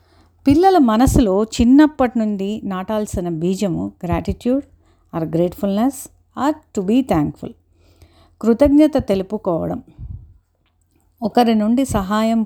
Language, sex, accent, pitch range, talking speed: Telugu, female, native, 190-245 Hz, 85 wpm